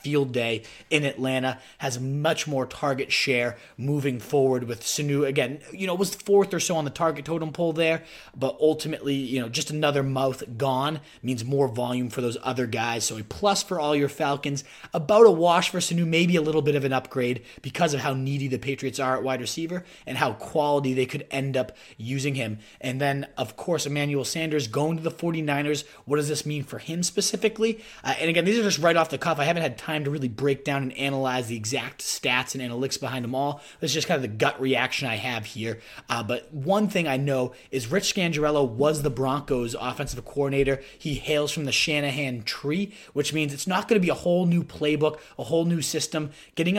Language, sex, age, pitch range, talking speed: English, male, 30-49, 130-160 Hz, 220 wpm